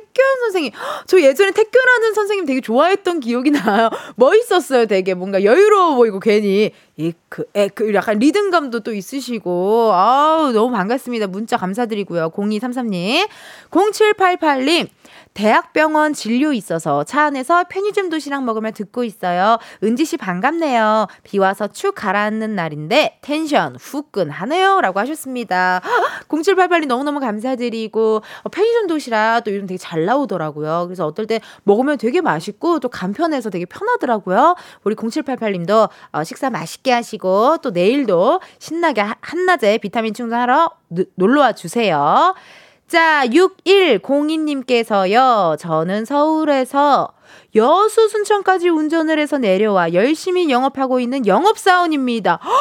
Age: 20-39